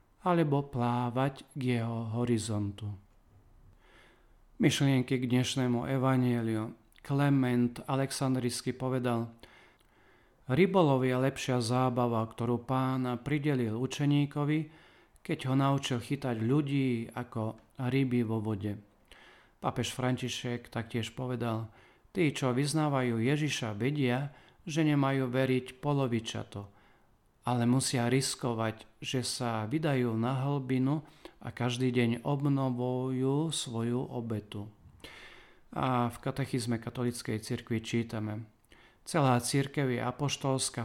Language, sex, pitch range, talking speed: Slovak, male, 120-135 Hz, 95 wpm